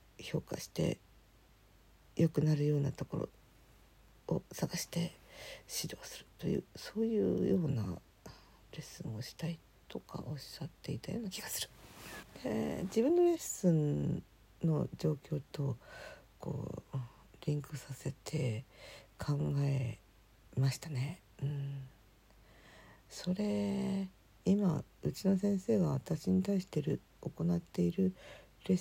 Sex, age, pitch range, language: female, 50-69, 120-185 Hz, Japanese